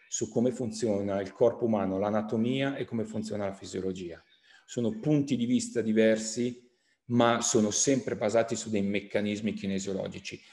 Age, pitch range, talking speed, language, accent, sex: 40-59, 115-155 Hz, 140 wpm, Italian, native, male